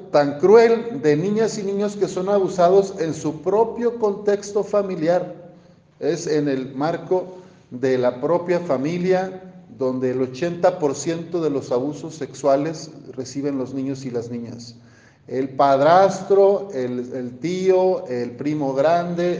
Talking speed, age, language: 135 wpm, 50-69, Spanish